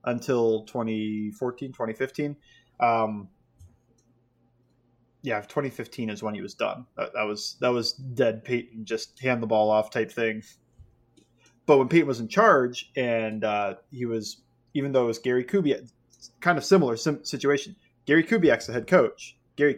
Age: 20-39